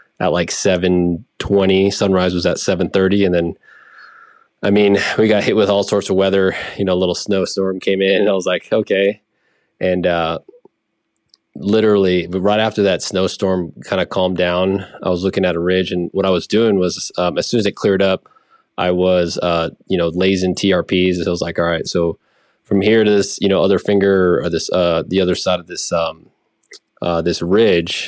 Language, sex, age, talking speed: English, male, 20-39, 205 wpm